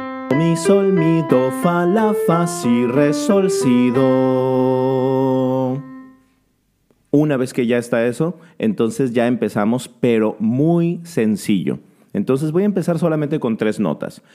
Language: Spanish